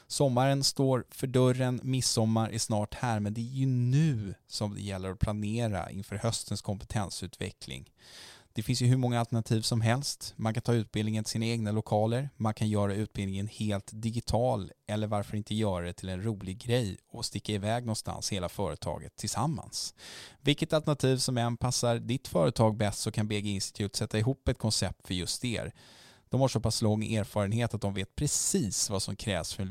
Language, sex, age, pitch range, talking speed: English, male, 10-29, 100-125 Hz, 185 wpm